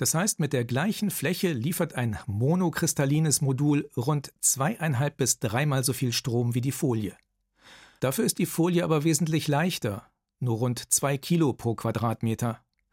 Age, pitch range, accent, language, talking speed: 40-59, 125-160 Hz, German, German, 155 wpm